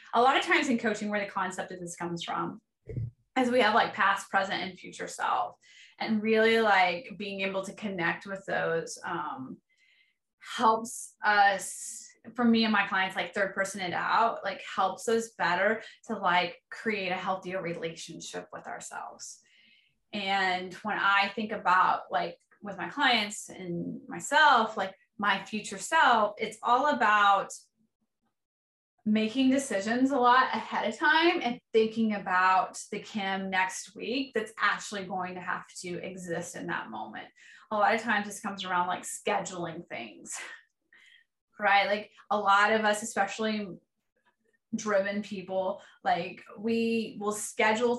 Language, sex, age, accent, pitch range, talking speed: English, female, 20-39, American, 190-230 Hz, 150 wpm